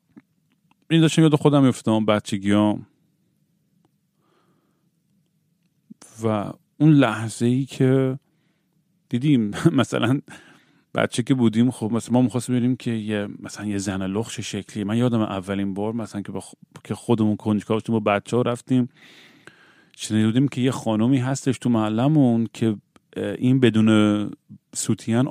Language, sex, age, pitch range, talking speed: Persian, male, 40-59, 105-135 Hz, 125 wpm